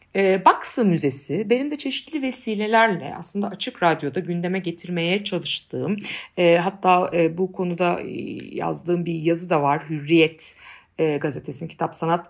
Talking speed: 120 wpm